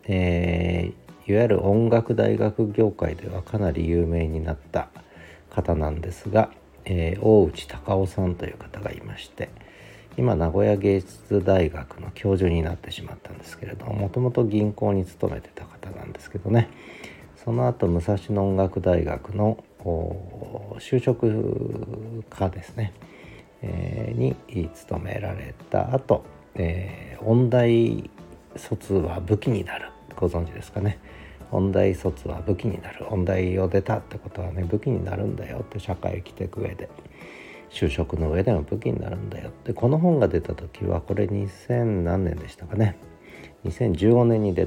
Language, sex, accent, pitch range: Japanese, male, native, 85-105 Hz